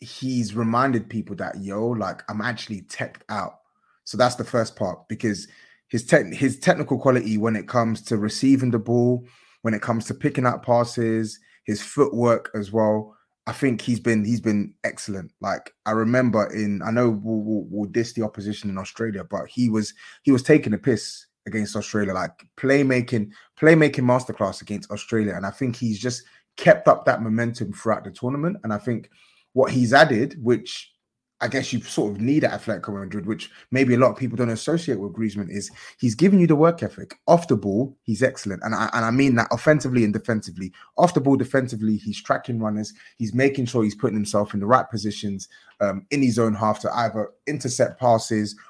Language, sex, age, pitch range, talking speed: English, male, 20-39, 105-125 Hz, 200 wpm